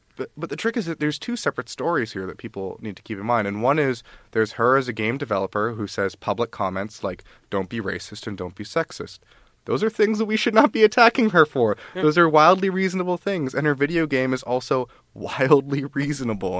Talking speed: 230 wpm